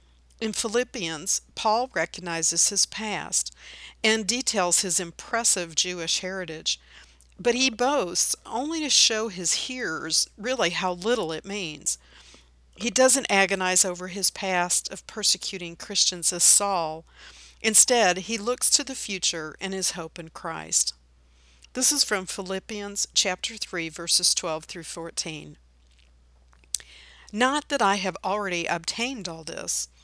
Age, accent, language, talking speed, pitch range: 50-69, American, English, 130 wpm, 160-210 Hz